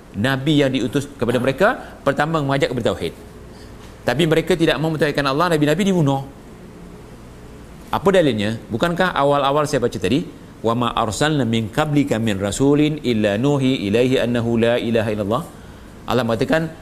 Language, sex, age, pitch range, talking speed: Malay, male, 40-59, 115-160 Hz, 145 wpm